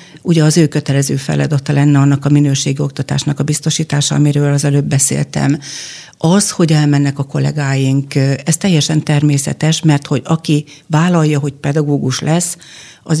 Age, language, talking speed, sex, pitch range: 60-79, Hungarian, 145 wpm, female, 140-165 Hz